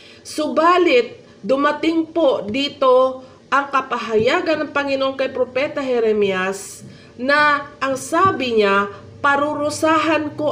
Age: 40-59